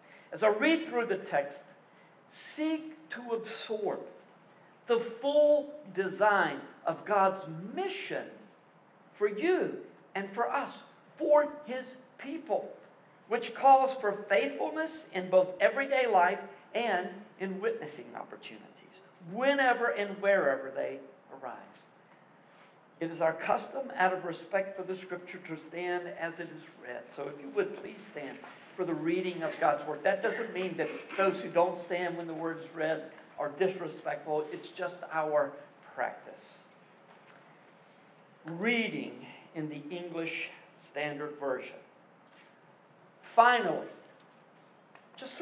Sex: male